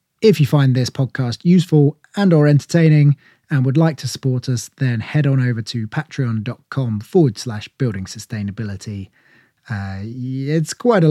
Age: 20-39